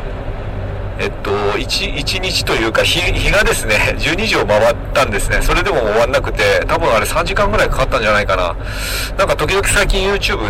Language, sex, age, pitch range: Japanese, male, 40-59, 95-125 Hz